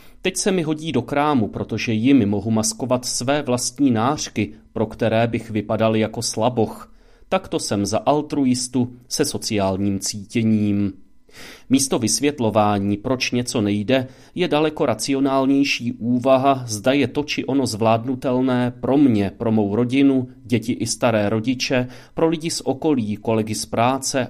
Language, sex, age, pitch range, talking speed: Czech, male, 30-49, 110-135 Hz, 140 wpm